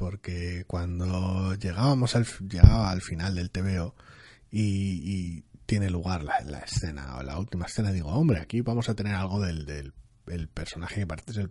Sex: male